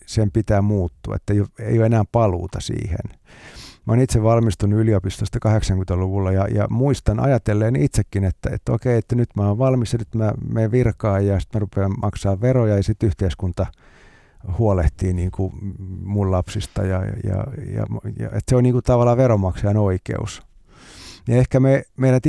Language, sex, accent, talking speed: Finnish, male, native, 165 wpm